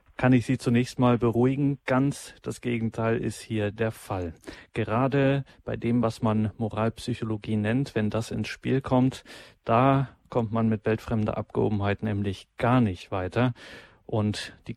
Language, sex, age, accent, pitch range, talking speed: German, male, 40-59, German, 110-125 Hz, 150 wpm